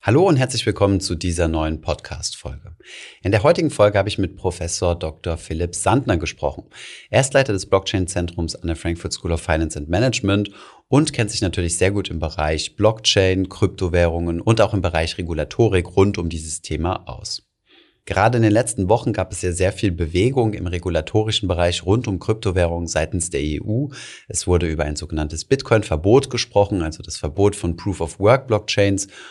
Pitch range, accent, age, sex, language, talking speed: 85-110 Hz, German, 30-49, male, German, 175 wpm